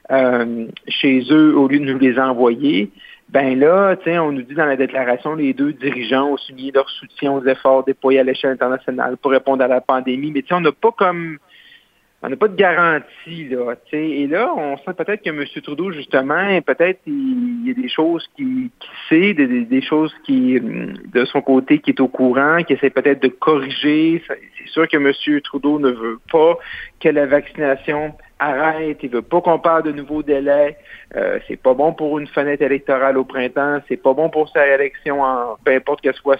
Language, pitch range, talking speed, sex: French, 135-160 Hz, 205 wpm, male